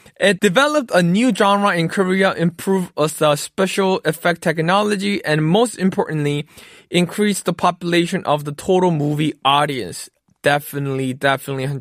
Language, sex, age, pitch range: Korean, male, 20-39, 160-205 Hz